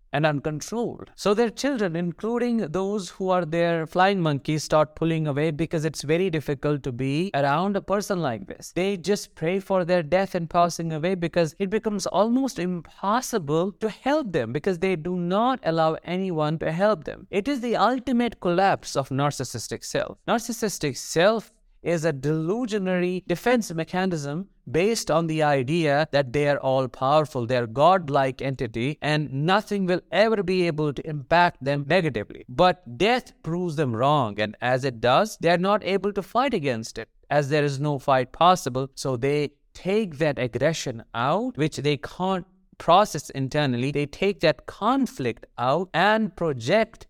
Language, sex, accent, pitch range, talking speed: English, male, Indian, 135-190 Hz, 165 wpm